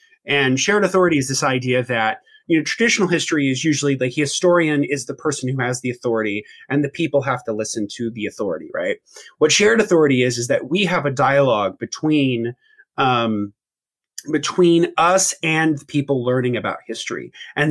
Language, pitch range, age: English, 130-160 Hz, 30-49